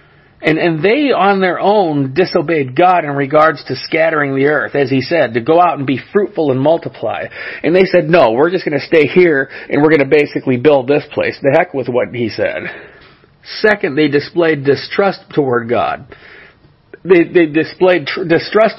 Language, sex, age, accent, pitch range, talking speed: English, male, 40-59, American, 140-180 Hz, 185 wpm